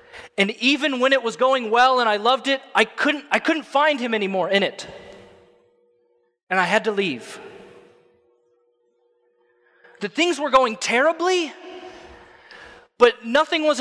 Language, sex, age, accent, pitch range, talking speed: English, male, 20-39, American, 155-260 Hz, 145 wpm